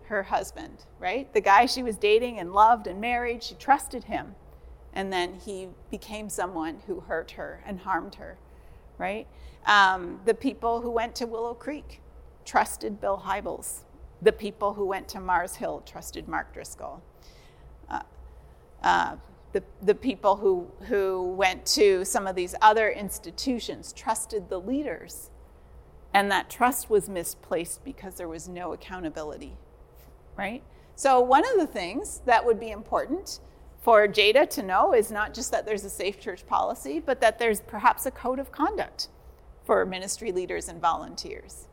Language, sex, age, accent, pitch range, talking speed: English, female, 40-59, American, 180-250 Hz, 160 wpm